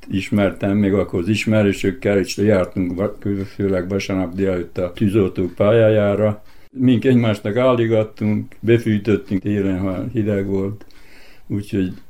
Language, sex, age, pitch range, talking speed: Hungarian, male, 60-79, 95-110 Hz, 110 wpm